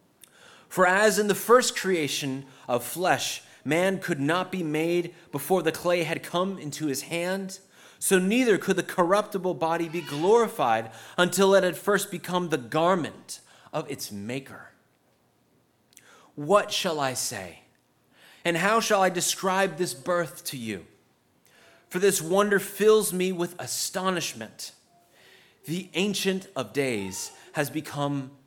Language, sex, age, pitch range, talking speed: English, male, 30-49, 145-195 Hz, 135 wpm